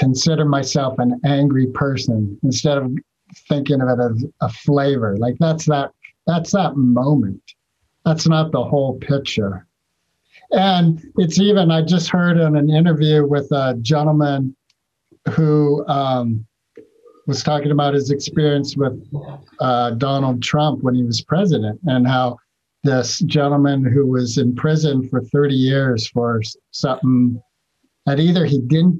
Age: 50-69